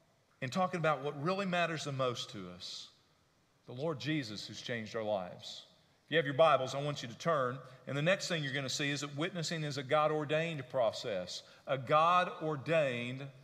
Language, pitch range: English, 155-195 Hz